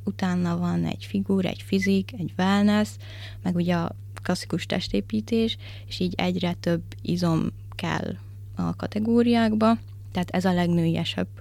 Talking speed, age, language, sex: 130 wpm, 20-39, Hungarian, female